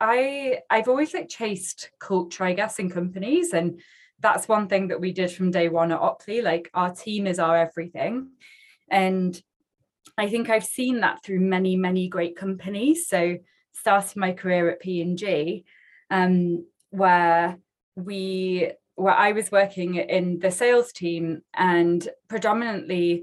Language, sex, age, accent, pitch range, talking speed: English, female, 20-39, British, 175-220 Hz, 150 wpm